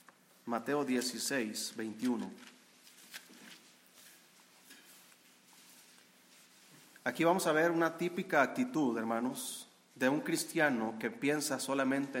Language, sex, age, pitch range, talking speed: Spanish, male, 40-59, 130-180 Hz, 85 wpm